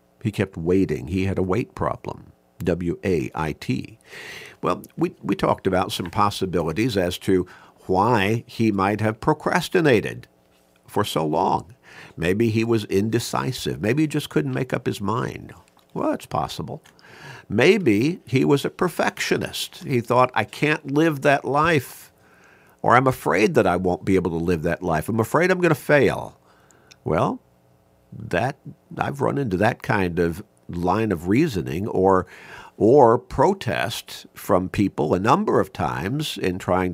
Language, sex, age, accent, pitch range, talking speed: English, male, 50-69, American, 90-120 Hz, 150 wpm